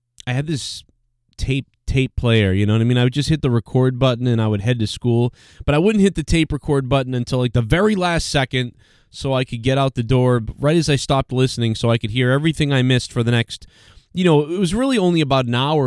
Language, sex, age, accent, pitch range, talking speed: English, male, 20-39, American, 115-150 Hz, 265 wpm